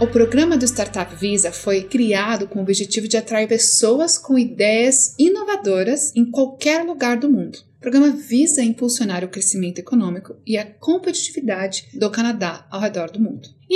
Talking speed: 165 wpm